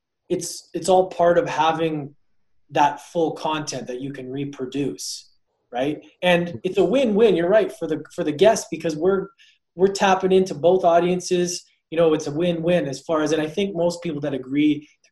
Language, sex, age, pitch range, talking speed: English, male, 20-39, 135-175 Hz, 190 wpm